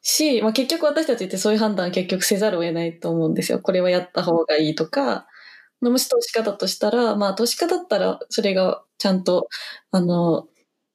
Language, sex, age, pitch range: Japanese, female, 20-39, 185-255 Hz